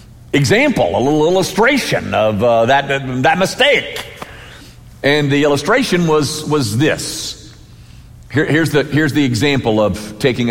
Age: 50-69